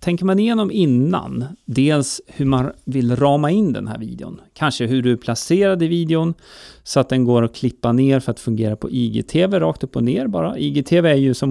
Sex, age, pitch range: male, 30-49, 125-170 Hz